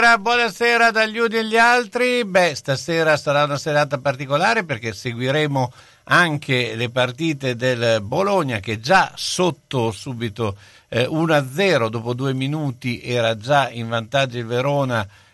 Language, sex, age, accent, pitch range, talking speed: Italian, male, 50-69, native, 105-145 Hz, 135 wpm